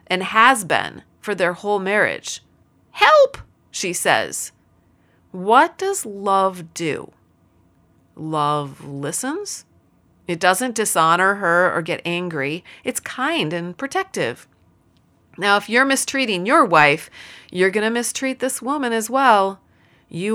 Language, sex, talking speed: English, female, 125 wpm